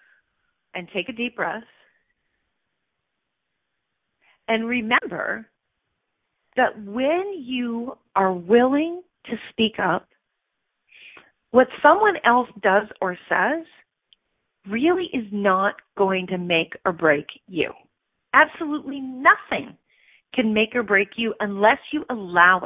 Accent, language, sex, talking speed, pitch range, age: American, English, female, 105 wpm, 195-280 Hz, 40-59